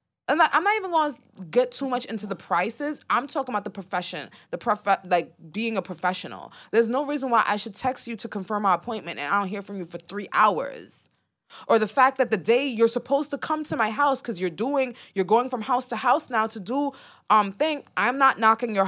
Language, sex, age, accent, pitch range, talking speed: English, female, 20-39, American, 195-260 Hz, 240 wpm